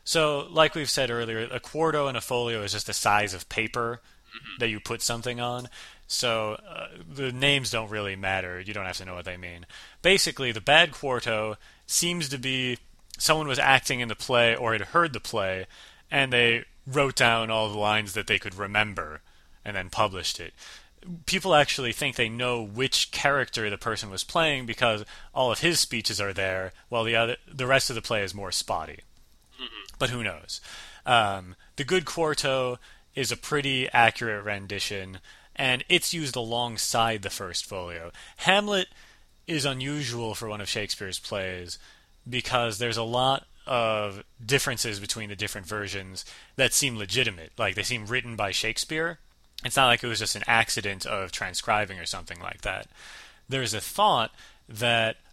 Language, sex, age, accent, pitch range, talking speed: English, male, 30-49, American, 105-135 Hz, 175 wpm